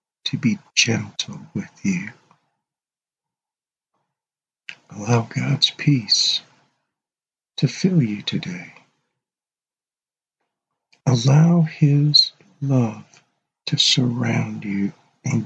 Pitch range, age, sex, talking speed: 115-150 Hz, 60-79, male, 75 wpm